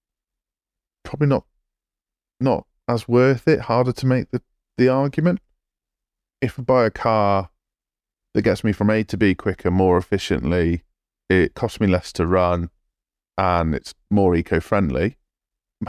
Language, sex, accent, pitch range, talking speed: English, male, British, 90-110 Hz, 145 wpm